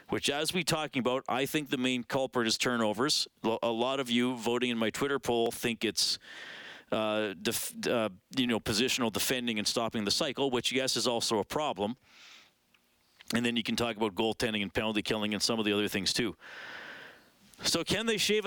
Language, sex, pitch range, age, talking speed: English, male, 115-145 Hz, 40-59, 195 wpm